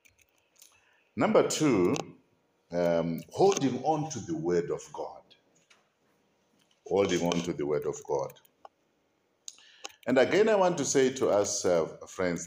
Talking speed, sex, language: 130 wpm, male, English